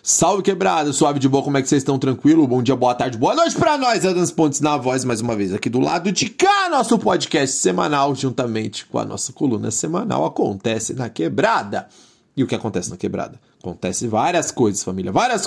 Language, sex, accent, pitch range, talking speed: Portuguese, male, Brazilian, 135-220 Hz, 210 wpm